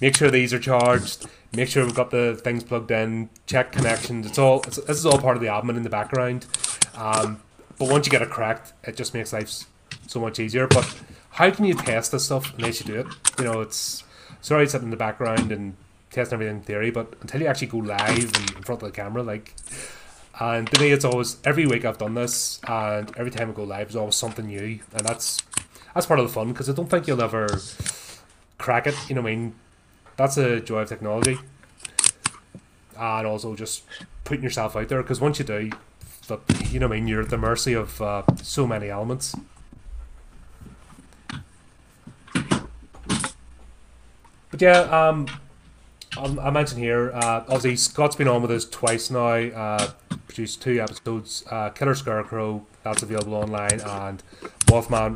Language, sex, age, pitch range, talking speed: English, male, 30-49, 105-130 Hz, 195 wpm